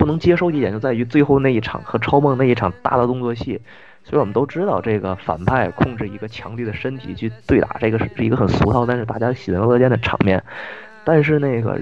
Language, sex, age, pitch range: Chinese, male, 20-39, 110-150 Hz